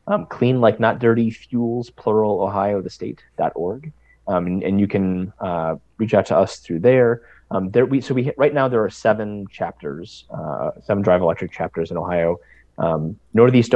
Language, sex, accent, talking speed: English, male, American, 185 wpm